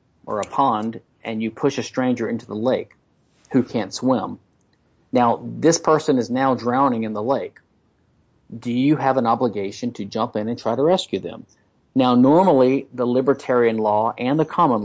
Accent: American